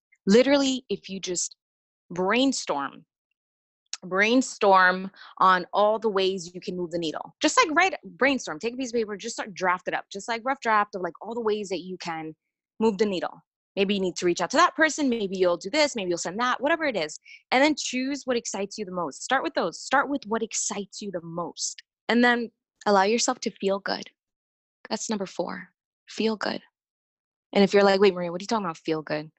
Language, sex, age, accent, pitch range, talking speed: English, female, 20-39, American, 180-230 Hz, 220 wpm